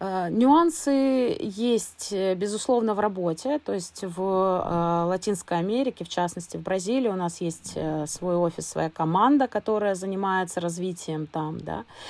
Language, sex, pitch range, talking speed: Russian, female, 170-215 Hz, 130 wpm